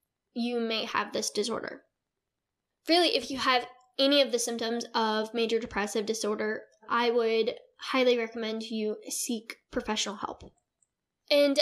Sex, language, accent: female, English, American